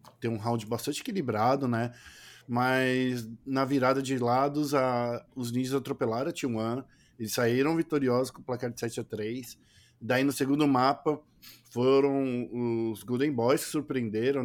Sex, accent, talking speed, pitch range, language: male, Brazilian, 155 wpm, 120-140 Hz, Portuguese